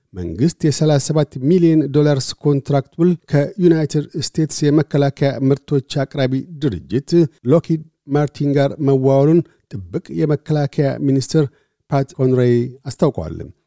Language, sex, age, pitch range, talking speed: Amharic, male, 50-69, 135-155 Hz, 90 wpm